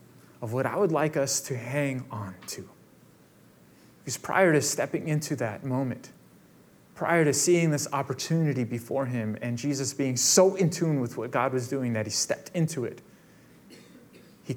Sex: male